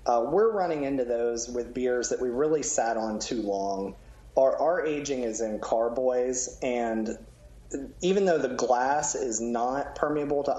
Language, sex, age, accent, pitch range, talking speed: English, male, 30-49, American, 110-140 Hz, 165 wpm